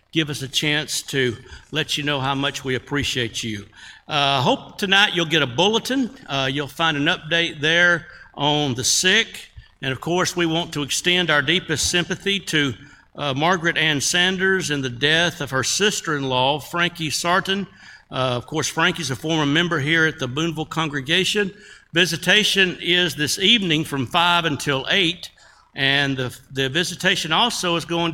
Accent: American